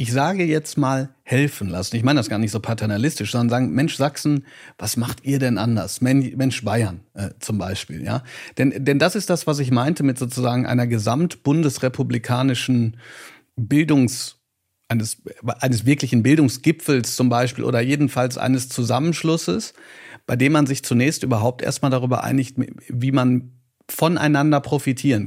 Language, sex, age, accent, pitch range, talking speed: German, male, 40-59, German, 120-145 Hz, 150 wpm